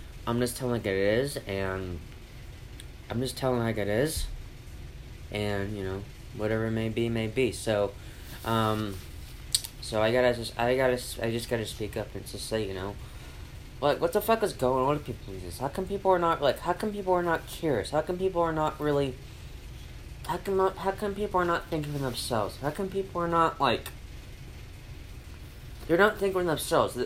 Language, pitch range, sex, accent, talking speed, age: English, 110-170 Hz, male, American, 195 wpm, 20-39